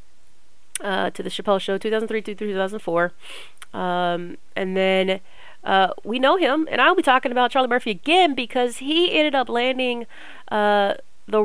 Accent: American